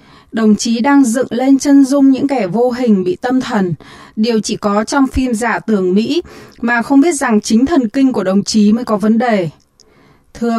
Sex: female